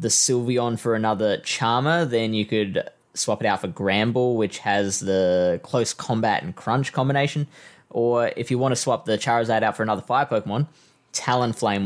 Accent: Australian